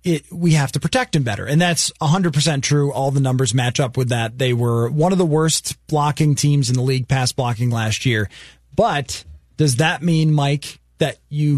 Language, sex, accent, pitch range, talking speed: English, male, American, 140-175 Hz, 200 wpm